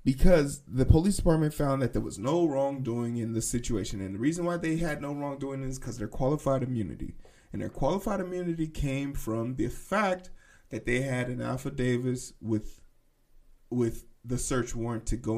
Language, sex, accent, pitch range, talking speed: English, male, American, 115-160 Hz, 180 wpm